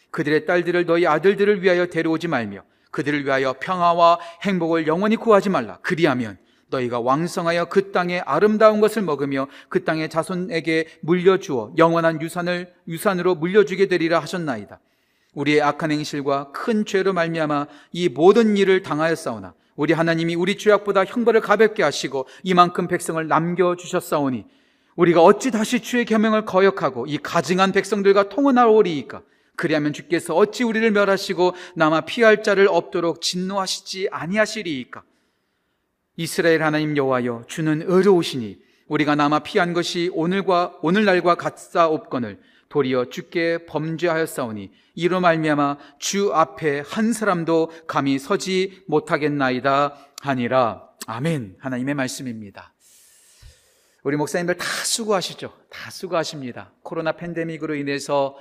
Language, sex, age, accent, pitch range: Korean, male, 40-59, native, 150-190 Hz